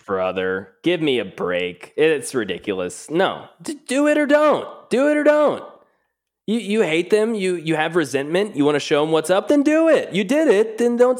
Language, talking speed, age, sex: English, 210 wpm, 20-39, male